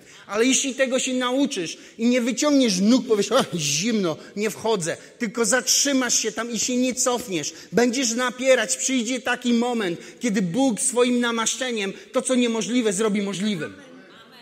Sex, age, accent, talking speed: male, 30-49, native, 145 wpm